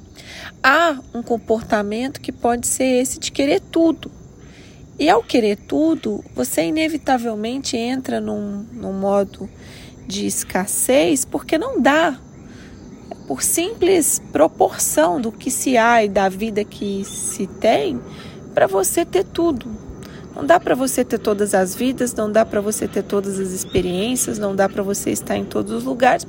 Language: Portuguese